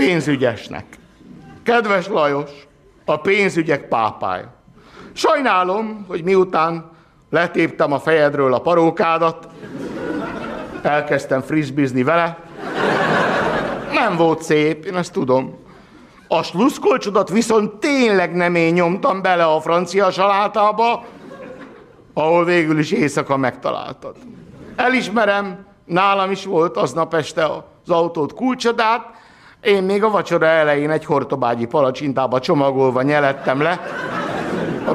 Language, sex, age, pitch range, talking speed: Hungarian, male, 60-79, 150-200 Hz, 105 wpm